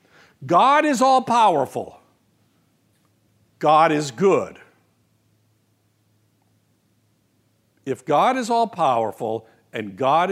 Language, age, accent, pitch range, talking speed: English, 60-79, American, 125-210 Hz, 70 wpm